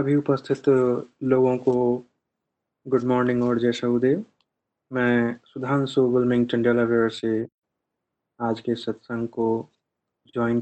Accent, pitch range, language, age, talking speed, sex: native, 120-140 Hz, Hindi, 30-49, 105 wpm, male